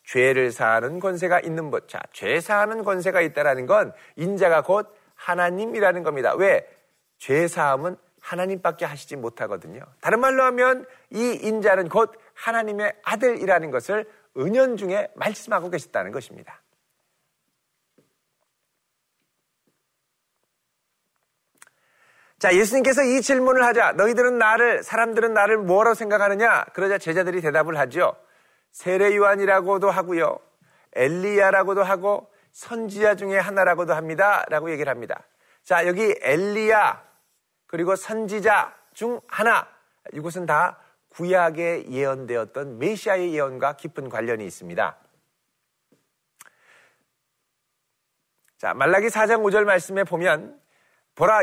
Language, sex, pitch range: Korean, male, 170-220 Hz